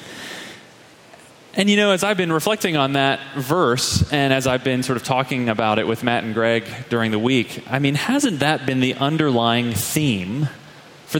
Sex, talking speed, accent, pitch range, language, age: male, 190 wpm, American, 120-170 Hz, English, 30-49